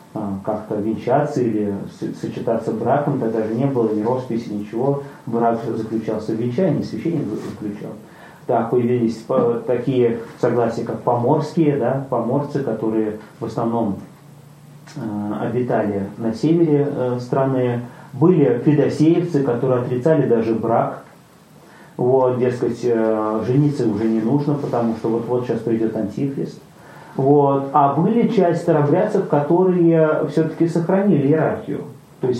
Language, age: Russian, 30-49